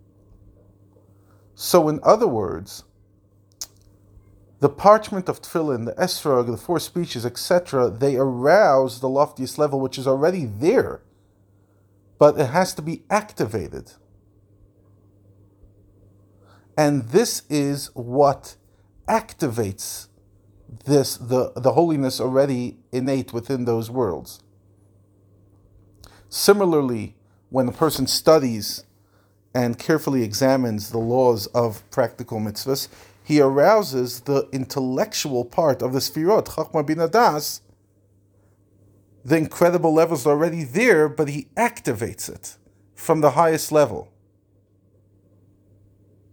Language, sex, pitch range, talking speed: English, male, 100-135 Hz, 105 wpm